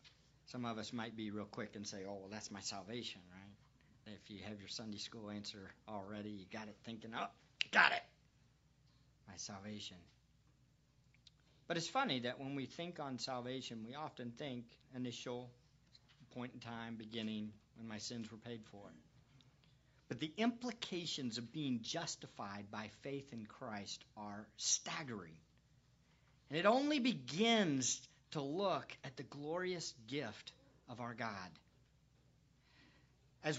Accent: American